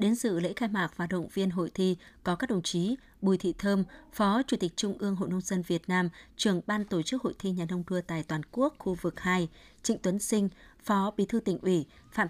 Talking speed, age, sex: 250 wpm, 20-39, female